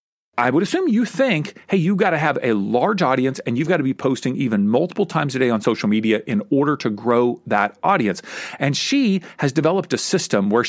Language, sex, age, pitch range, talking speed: English, male, 40-59, 125-185 Hz, 225 wpm